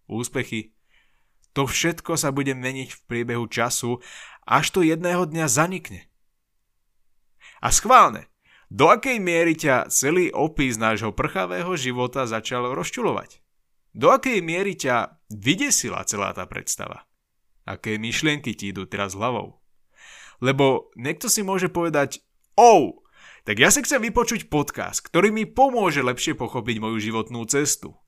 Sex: male